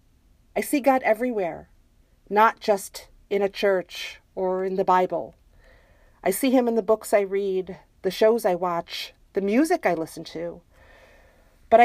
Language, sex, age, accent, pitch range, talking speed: English, female, 50-69, American, 185-230 Hz, 155 wpm